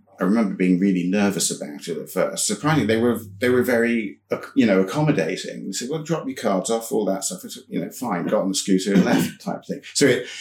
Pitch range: 95-110 Hz